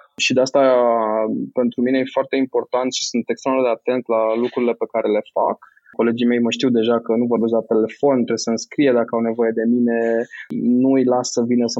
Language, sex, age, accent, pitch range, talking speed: Romanian, male, 20-39, native, 115-170 Hz, 220 wpm